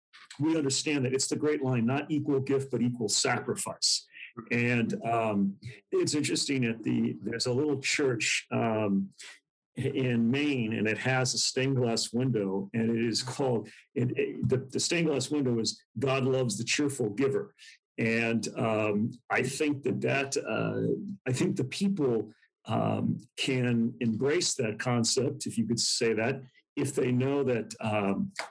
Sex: male